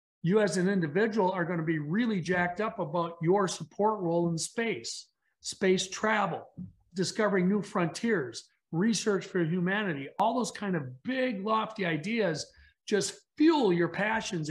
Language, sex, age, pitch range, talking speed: English, male, 50-69, 170-215 Hz, 150 wpm